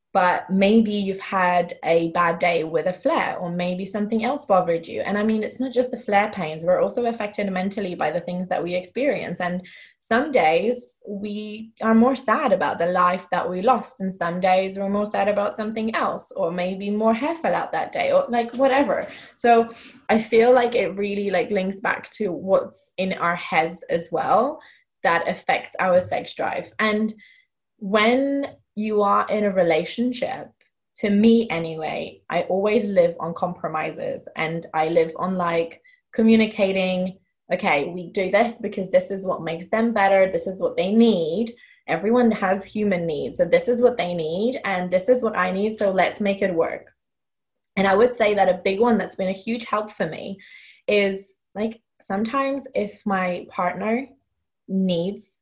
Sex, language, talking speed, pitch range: female, English, 185 wpm, 180-230 Hz